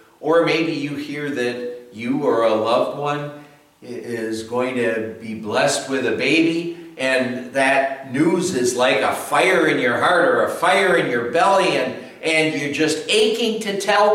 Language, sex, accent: English, male, American